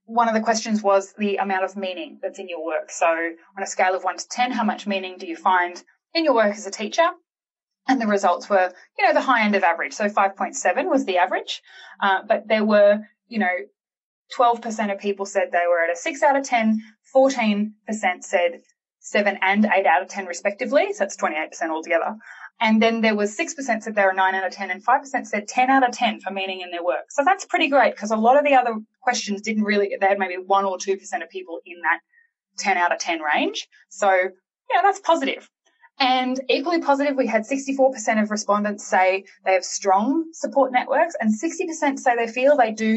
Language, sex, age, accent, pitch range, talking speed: English, female, 20-39, Australian, 190-260 Hz, 220 wpm